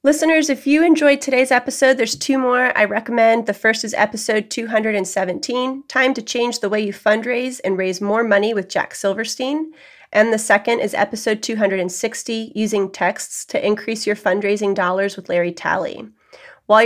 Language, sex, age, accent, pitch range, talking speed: English, female, 30-49, American, 200-245 Hz, 165 wpm